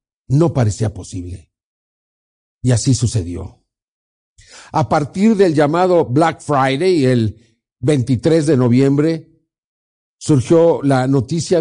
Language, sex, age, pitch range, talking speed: Spanish, male, 50-69, 125-170 Hz, 100 wpm